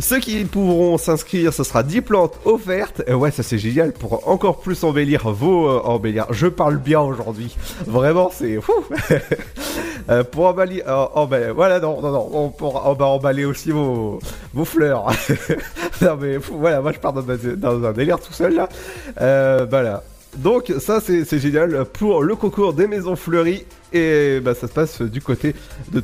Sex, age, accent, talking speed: male, 30-49, French, 185 wpm